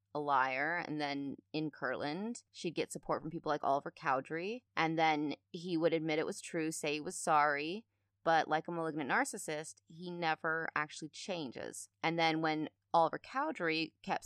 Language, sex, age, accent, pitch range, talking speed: English, female, 30-49, American, 150-180 Hz, 175 wpm